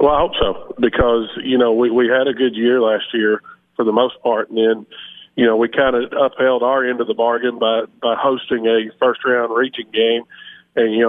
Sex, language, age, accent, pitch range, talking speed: male, English, 40-59, American, 115-130 Hz, 225 wpm